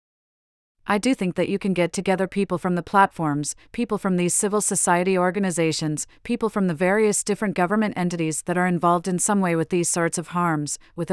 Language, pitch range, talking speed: English, 165-195 Hz, 200 wpm